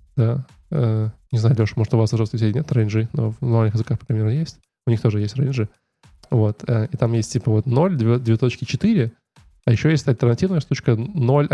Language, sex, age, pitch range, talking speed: Russian, male, 10-29, 115-140 Hz, 195 wpm